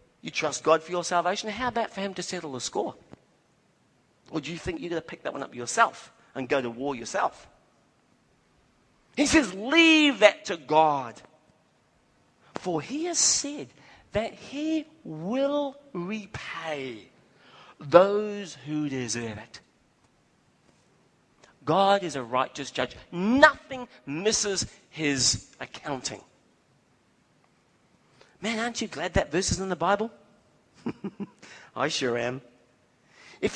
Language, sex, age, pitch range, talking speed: English, male, 40-59, 135-215 Hz, 130 wpm